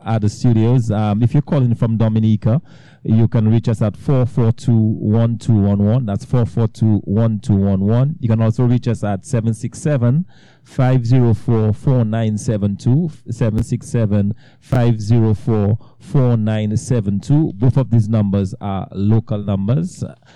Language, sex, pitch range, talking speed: English, male, 110-140 Hz, 95 wpm